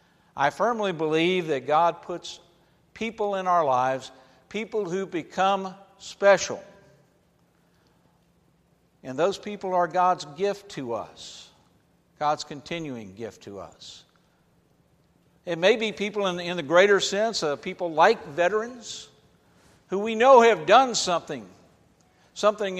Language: English